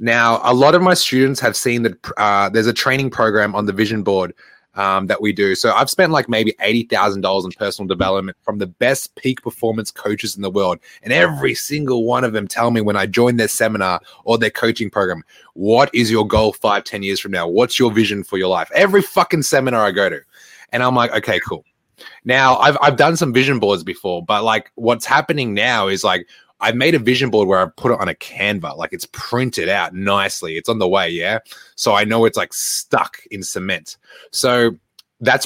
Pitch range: 100-125 Hz